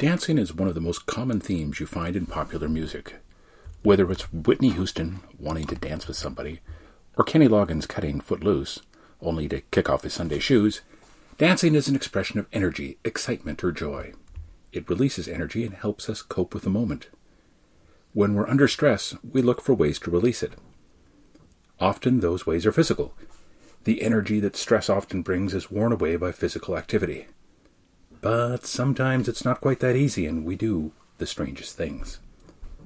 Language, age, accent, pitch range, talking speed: English, 40-59, American, 85-125 Hz, 175 wpm